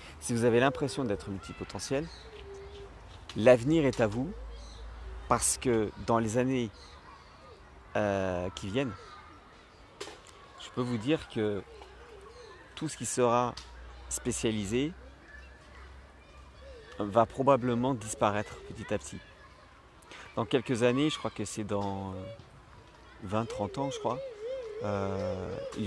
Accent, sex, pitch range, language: French, male, 95-130 Hz, French